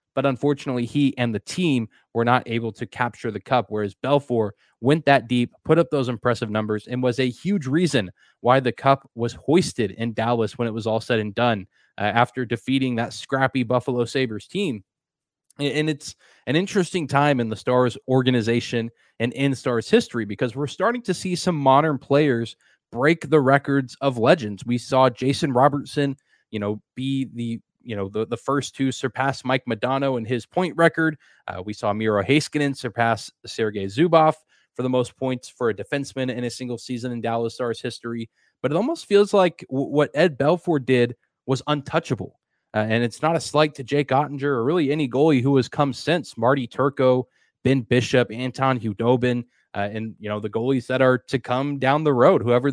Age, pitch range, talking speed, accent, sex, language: 20-39, 115-140 Hz, 190 wpm, American, male, English